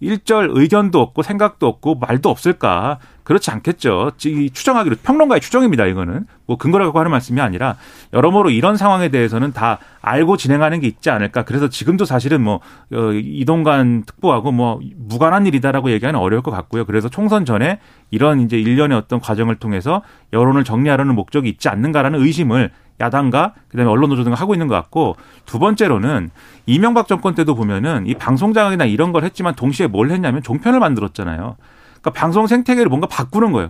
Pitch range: 120-185 Hz